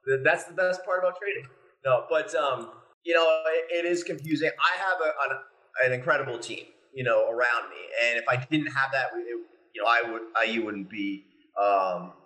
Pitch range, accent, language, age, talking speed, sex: 125-175 Hz, American, English, 30-49, 200 wpm, male